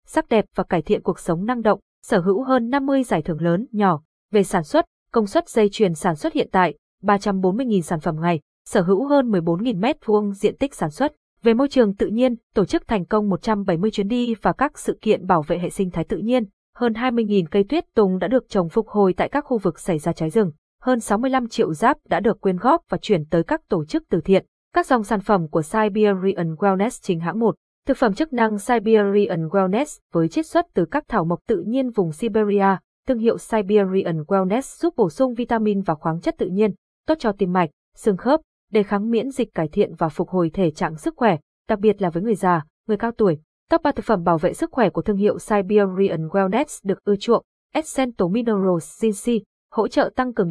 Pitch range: 185-235 Hz